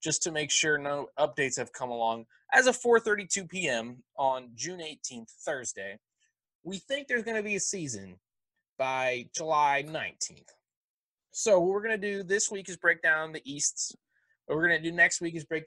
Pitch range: 125-165 Hz